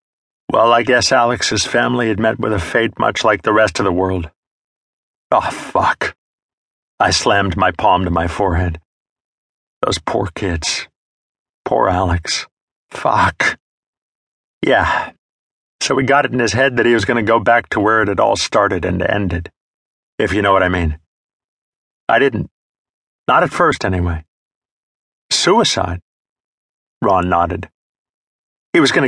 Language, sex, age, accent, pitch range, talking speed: English, male, 50-69, American, 90-120 Hz, 150 wpm